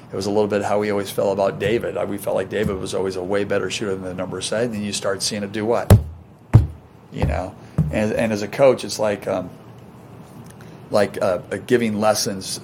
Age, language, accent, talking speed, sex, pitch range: 40-59, English, American, 230 wpm, male, 100-115 Hz